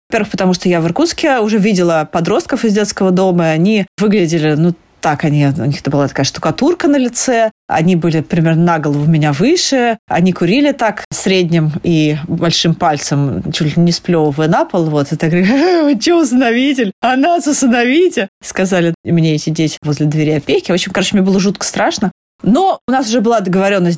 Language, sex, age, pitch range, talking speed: Russian, female, 30-49, 170-235 Hz, 185 wpm